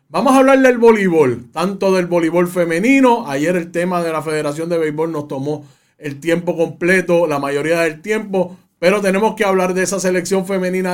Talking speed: 185 wpm